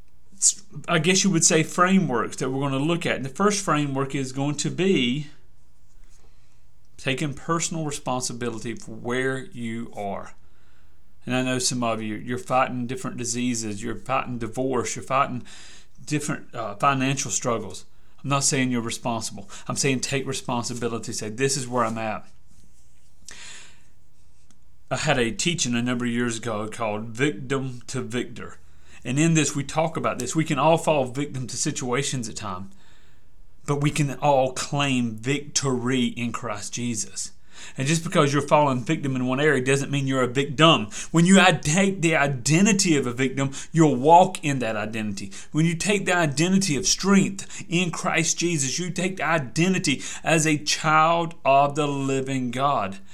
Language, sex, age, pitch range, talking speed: English, male, 30-49, 120-160 Hz, 165 wpm